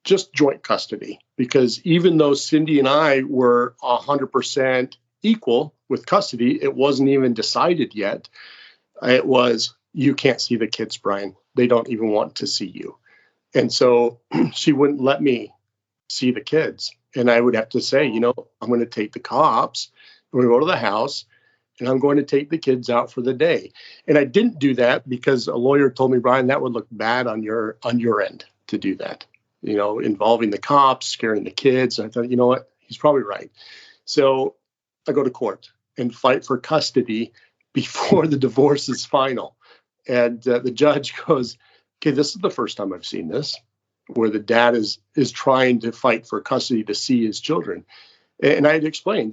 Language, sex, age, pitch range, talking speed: English, male, 50-69, 120-145 Hz, 195 wpm